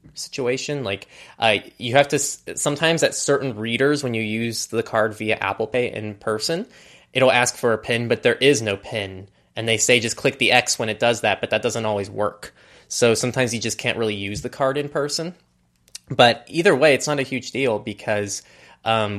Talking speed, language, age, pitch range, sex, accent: 215 wpm, English, 20-39, 100-120 Hz, male, American